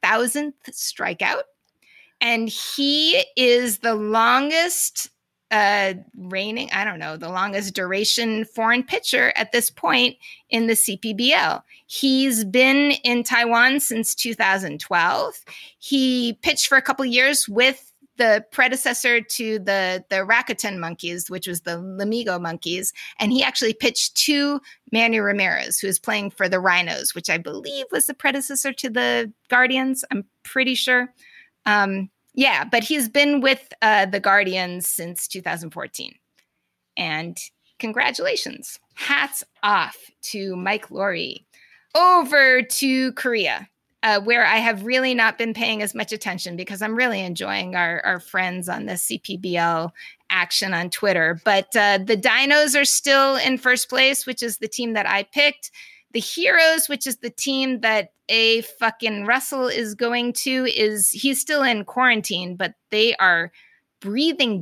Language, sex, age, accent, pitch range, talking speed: English, female, 30-49, American, 195-265 Hz, 145 wpm